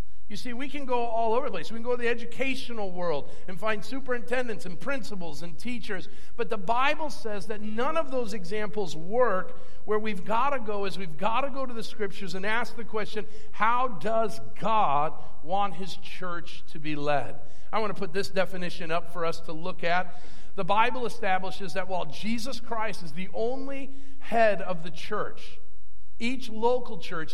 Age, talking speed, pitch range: 50-69, 195 wpm, 170-230 Hz